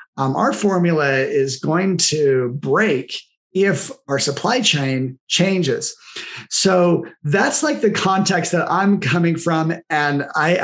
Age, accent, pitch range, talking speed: 30-49, American, 145-185 Hz, 130 wpm